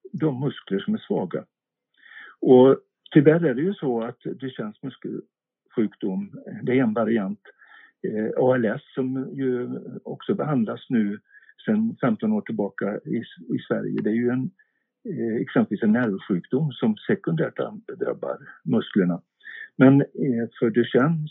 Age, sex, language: 60-79, male, Swedish